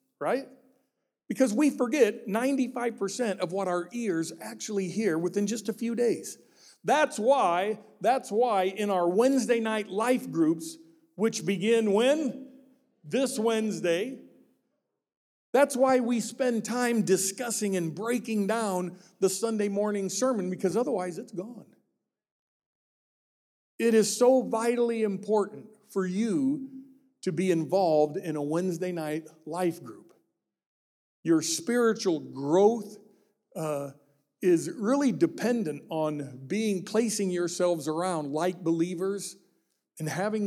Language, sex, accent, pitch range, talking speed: English, male, American, 165-225 Hz, 120 wpm